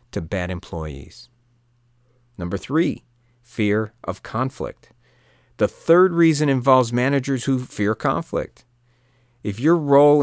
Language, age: English, 40-59